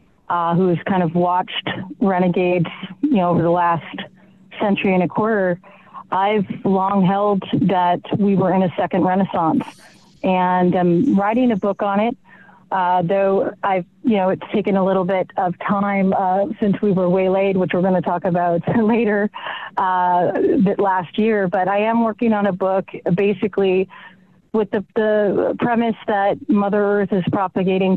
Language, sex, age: English, female, 30-49